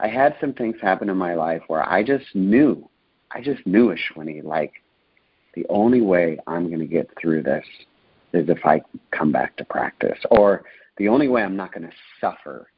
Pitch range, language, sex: 85-120 Hz, English, male